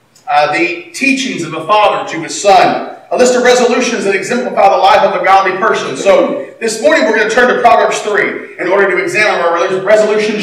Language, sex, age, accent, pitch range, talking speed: English, male, 40-59, American, 175-240 Hz, 220 wpm